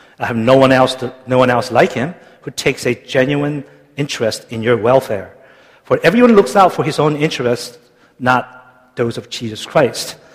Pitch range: 120-145 Hz